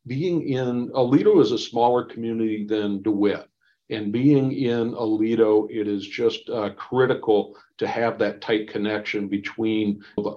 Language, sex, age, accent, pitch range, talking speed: English, male, 50-69, American, 110-135 Hz, 145 wpm